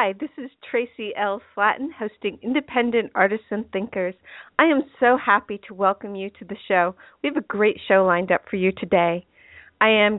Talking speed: 190 wpm